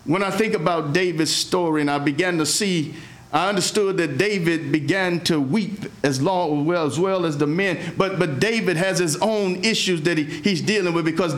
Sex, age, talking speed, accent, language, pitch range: male, 50-69, 205 wpm, American, English, 150-210 Hz